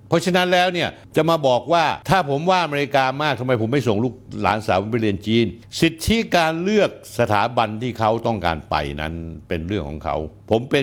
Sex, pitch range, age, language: male, 90-130 Hz, 60-79, Thai